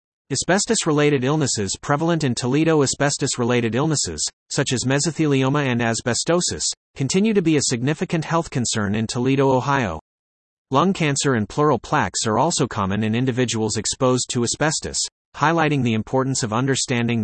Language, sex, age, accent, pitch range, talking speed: English, male, 30-49, American, 115-150 Hz, 140 wpm